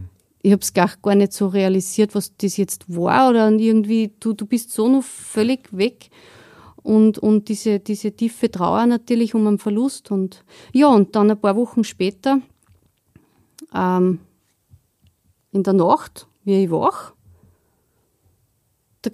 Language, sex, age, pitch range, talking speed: German, female, 30-49, 190-230 Hz, 145 wpm